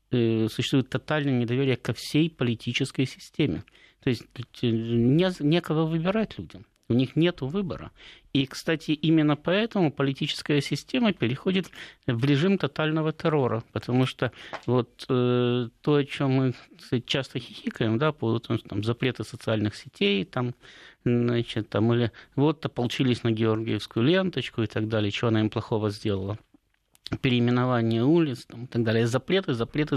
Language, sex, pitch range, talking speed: Russian, male, 115-150 Hz, 135 wpm